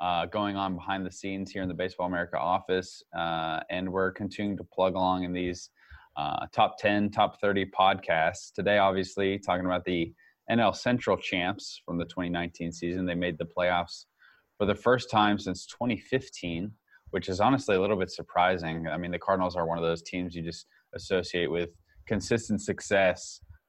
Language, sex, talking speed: English, male, 180 wpm